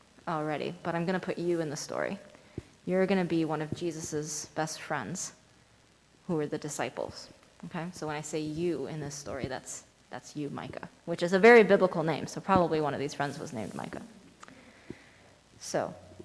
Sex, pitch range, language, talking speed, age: female, 160-205 Hz, English, 190 wpm, 20-39